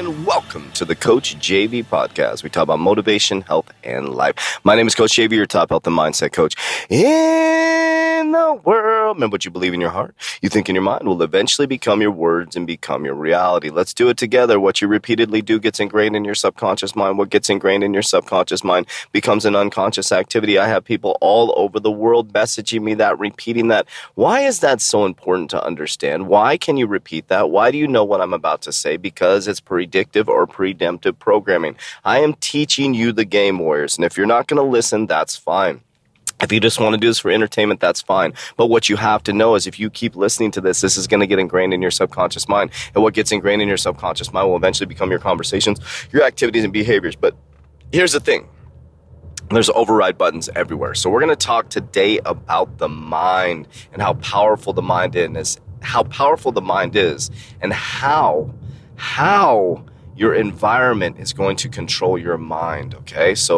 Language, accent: English, American